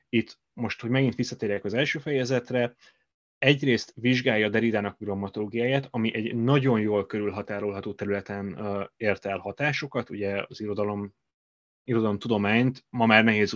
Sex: male